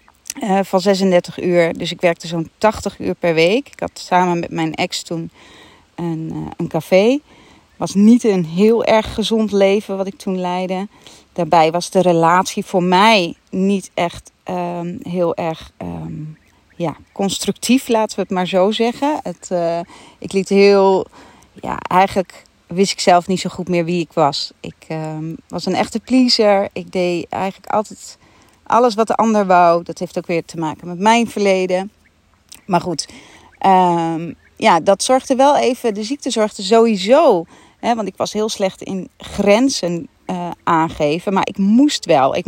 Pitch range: 170-215 Hz